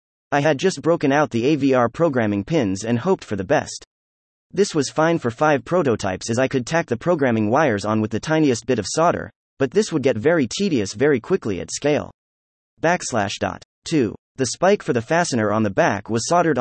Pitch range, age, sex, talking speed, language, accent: 110-160 Hz, 30-49, male, 200 wpm, English, American